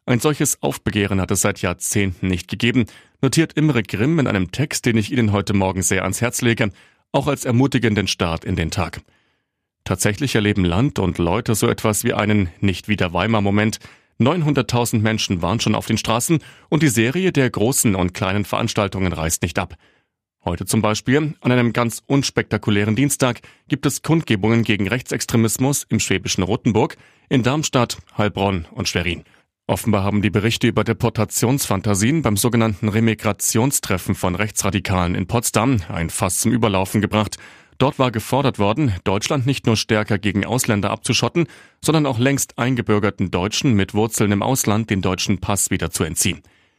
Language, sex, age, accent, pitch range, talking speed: German, male, 30-49, German, 100-125 Hz, 160 wpm